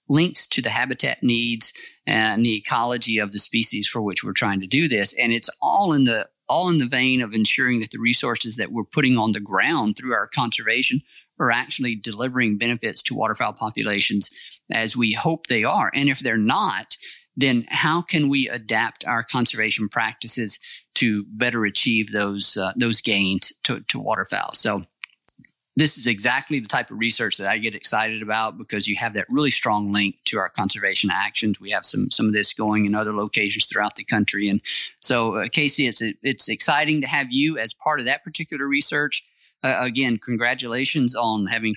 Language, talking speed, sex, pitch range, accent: English, 190 wpm, male, 110-130 Hz, American